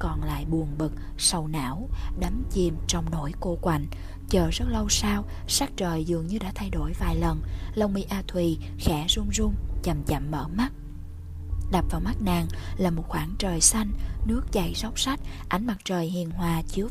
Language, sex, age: English, female, 20-39